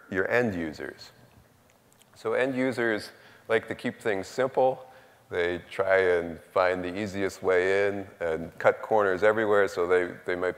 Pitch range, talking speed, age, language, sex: 90-115 Hz, 155 wpm, 30-49, English, male